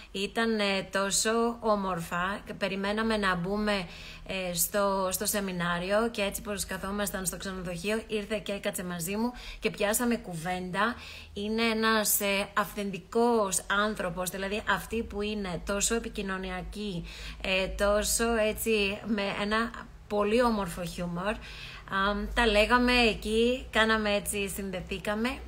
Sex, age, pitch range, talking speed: female, 20-39, 195-220 Hz, 110 wpm